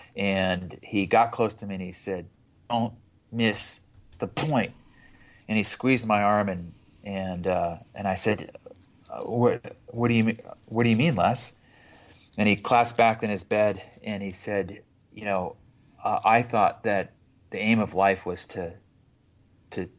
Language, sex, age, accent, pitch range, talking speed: English, male, 30-49, American, 90-110 Hz, 170 wpm